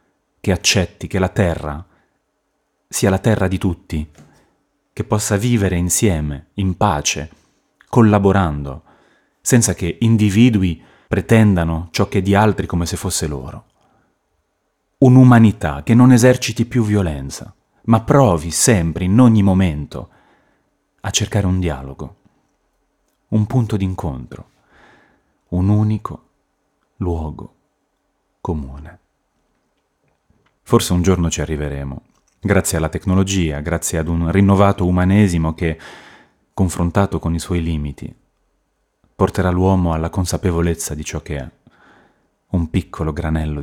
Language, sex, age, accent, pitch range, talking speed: Italian, male, 30-49, native, 80-100 Hz, 115 wpm